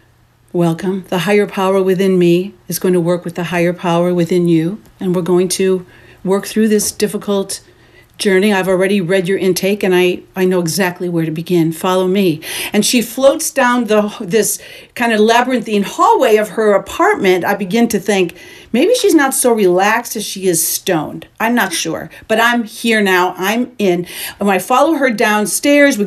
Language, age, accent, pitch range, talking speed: English, 50-69, American, 180-230 Hz, 185 wpm